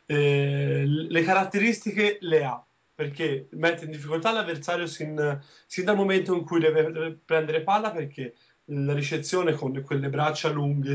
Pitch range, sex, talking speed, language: 145-170 Hz, male, 150 wpm, Italian